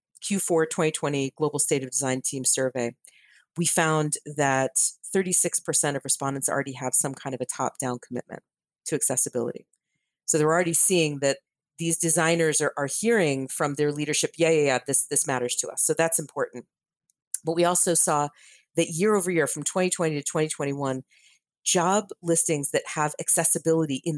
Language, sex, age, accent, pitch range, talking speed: English, female, 40-59, American, 140-180 Hz, 165 wpm